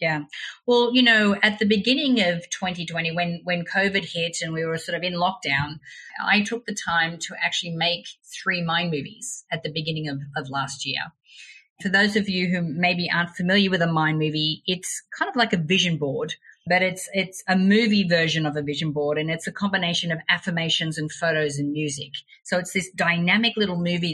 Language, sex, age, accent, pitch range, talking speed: English, female, 30-49, Australian, 155-190 Hz, 205 wpm